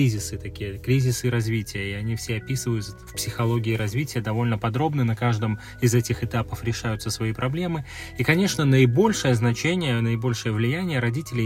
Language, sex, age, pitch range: Russian, male, 20-39, 115-140 Hz